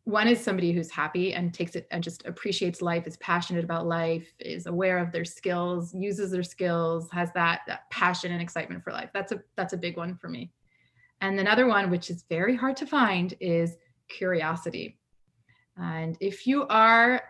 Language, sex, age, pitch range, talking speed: English, female, 30-49, 170-210 Hz, 190 wpm